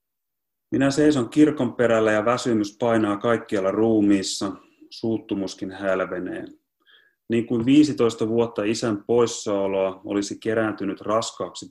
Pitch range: 100-115 Hz